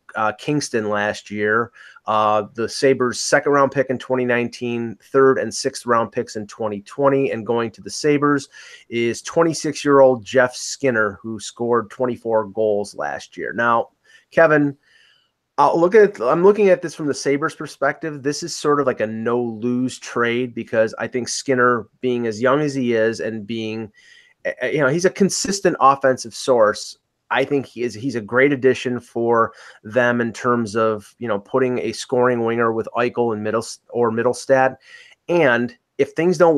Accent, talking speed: American, 170 wpm